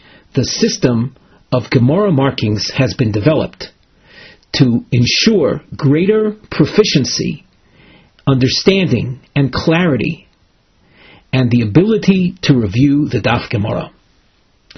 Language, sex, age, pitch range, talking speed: English, male, 40-59, 120-160 Hz, 95 wpm